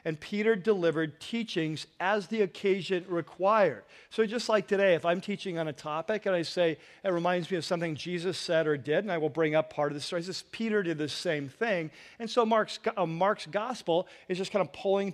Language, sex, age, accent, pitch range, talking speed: English, male, 40-59, American, 150-190 Hz, 225 wpm